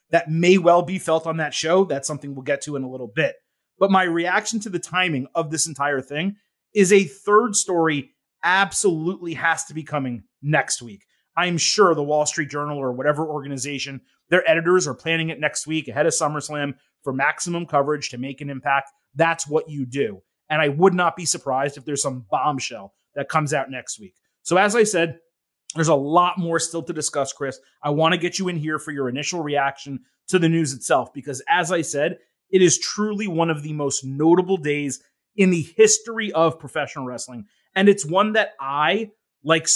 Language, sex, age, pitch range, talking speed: English, male, 30-49, 145-185 Hz, 205 wpm